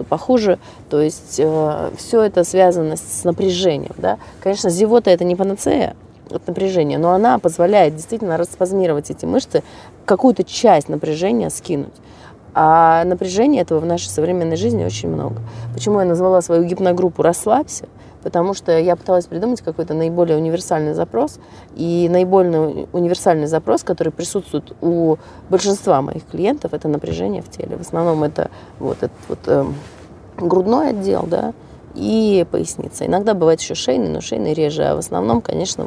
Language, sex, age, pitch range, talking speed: Russian, female, 30-49, 160-195 Hz, 145 wpm